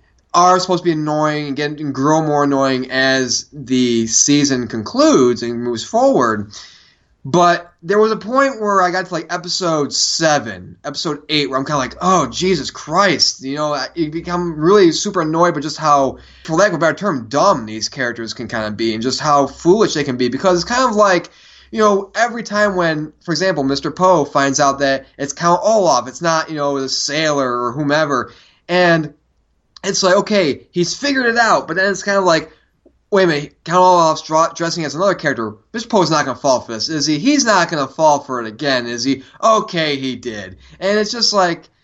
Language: English